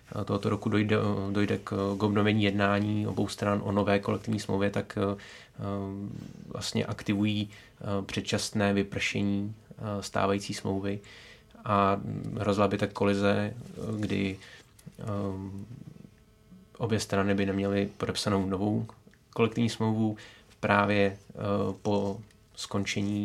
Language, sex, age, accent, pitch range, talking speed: Czech, male, 20-39, native, 100-105 Hz, 95 wpm